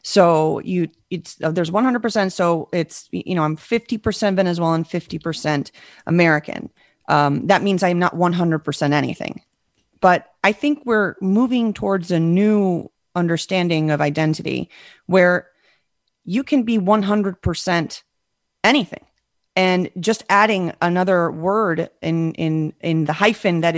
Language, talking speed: English, 125 wpm